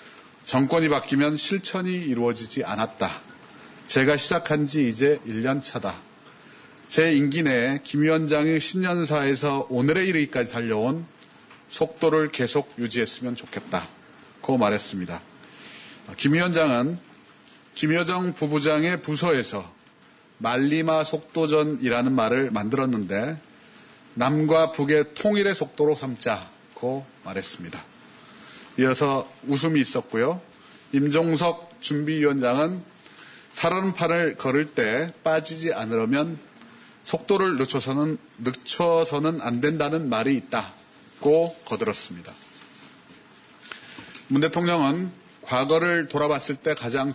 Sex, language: male, Korean